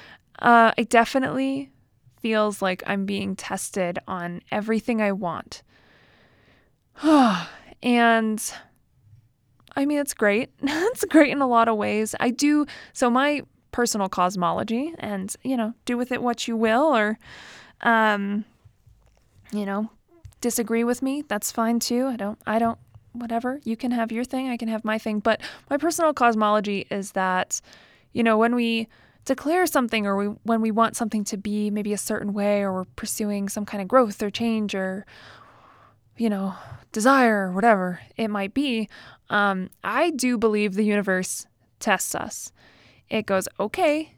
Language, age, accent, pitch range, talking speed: English, 20-39, American, 205-250 Hz, 160 wpm